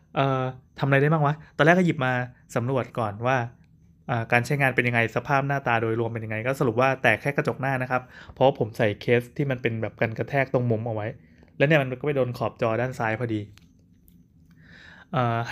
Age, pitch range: 20-39, 120-145 Hz